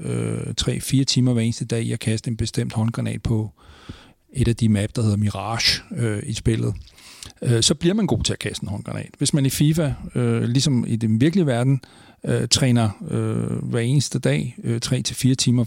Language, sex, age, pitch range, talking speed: Danish, male, 40-59, 115-140 Hz, 200 wpm